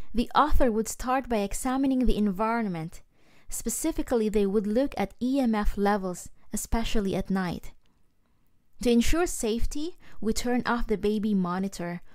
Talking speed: 135 wpm